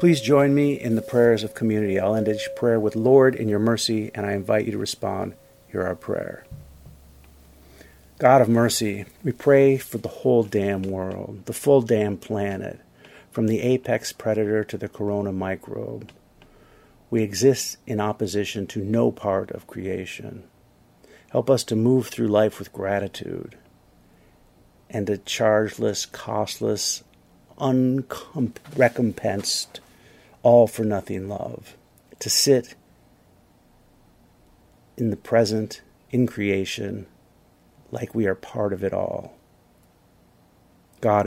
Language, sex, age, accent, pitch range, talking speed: English, male, 50-69, American, 100-120 Hz, 125 wpm